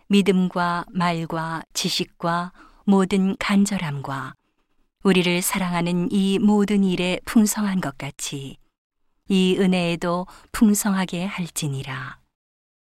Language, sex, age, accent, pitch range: Korean, female, 40-59, native, 165-195 Hz